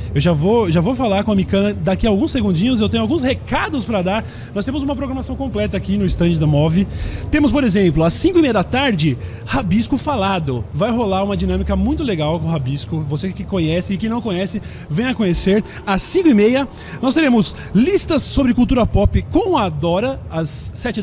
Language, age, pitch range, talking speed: Portuguese, 20-39, 165-235 Hz, 205 wpm